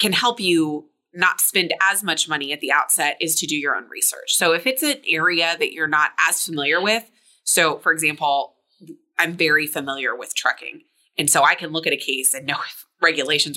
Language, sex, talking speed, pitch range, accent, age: English, female, 210 wpm, 150-220 Hz, American, 20-39